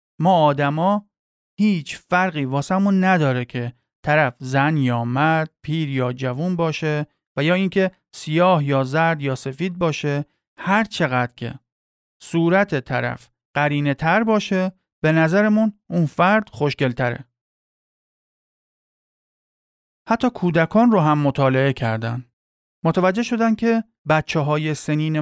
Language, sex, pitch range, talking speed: Persian, male, 135-185 Hz, 115 wpm